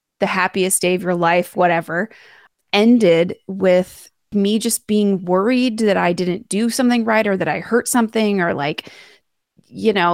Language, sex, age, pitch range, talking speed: English, female, 20-39, 180-225 Hz, 165 wpm